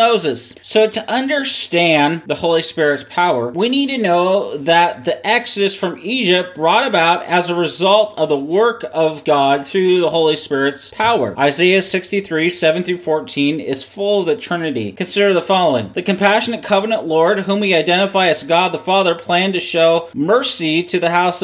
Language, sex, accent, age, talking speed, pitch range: English, male, American, 30-49, 170 wpm, 145-195 Hz